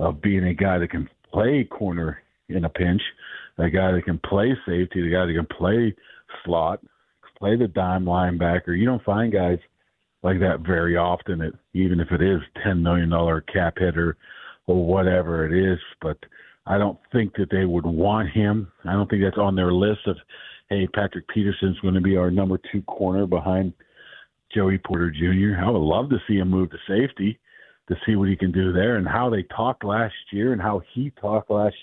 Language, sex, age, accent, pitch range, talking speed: English, male, 50-69, American, 90-110 Hz, 200 wpm